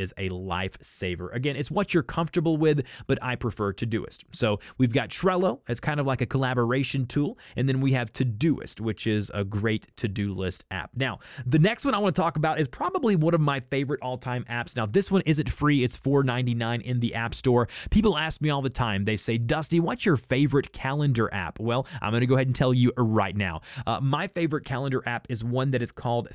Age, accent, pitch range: 30-49, American, 120-145 Hz